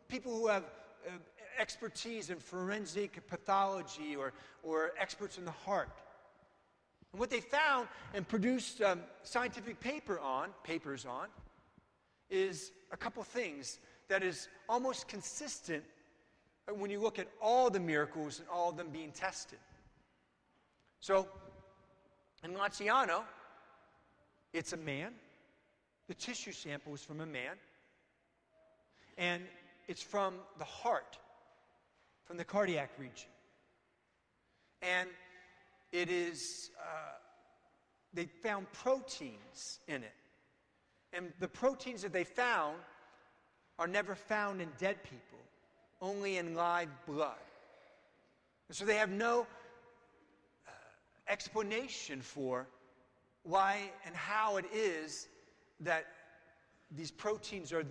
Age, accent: 40-59, American